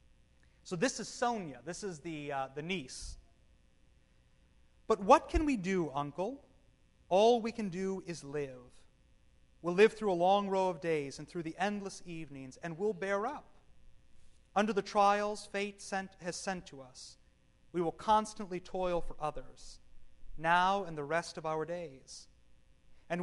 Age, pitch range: 30-49, 145-200 Hz